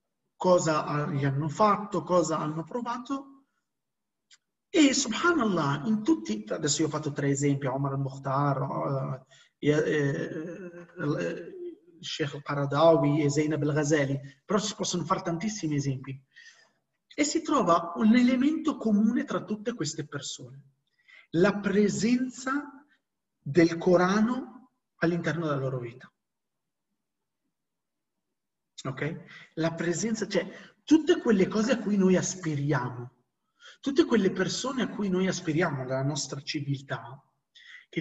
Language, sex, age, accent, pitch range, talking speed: Italian, male, 40-59, native, 150-215 Hz, 110 wpm